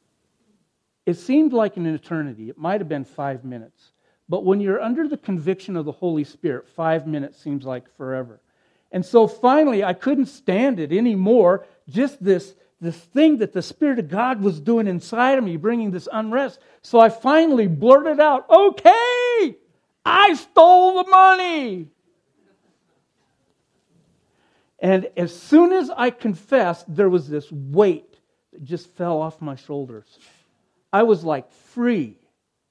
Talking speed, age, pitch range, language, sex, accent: 145 wpm, 50-69, 170-240 Hz, English, male, American